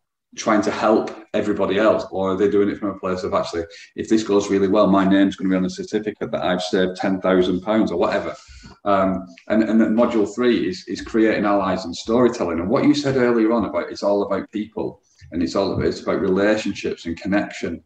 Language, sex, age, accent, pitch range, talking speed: English, male, 40-59, British, 95-120 Hz, 220 wpm